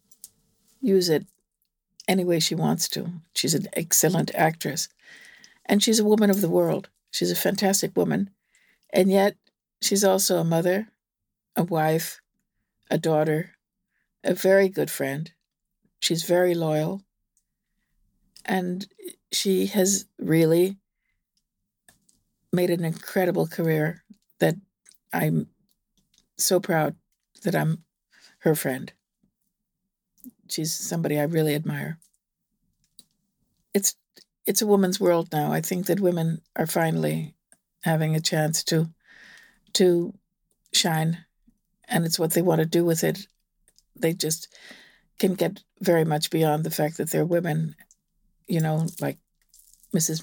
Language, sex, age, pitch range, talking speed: Slovak, female, 60-79, 160-195 Hz, 125 wpm